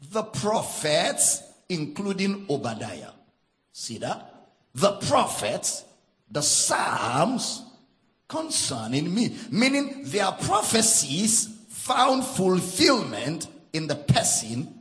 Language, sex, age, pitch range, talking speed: English, male, 50-69, 180-240 Hz, 80 wpm